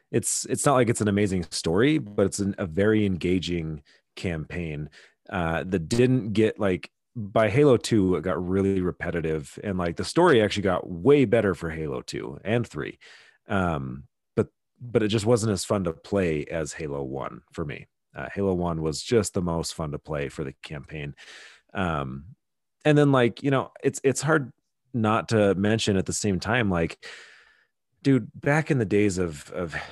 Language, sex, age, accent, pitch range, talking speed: English, male, 30-49, American, 85-115 Hz, 185 wpm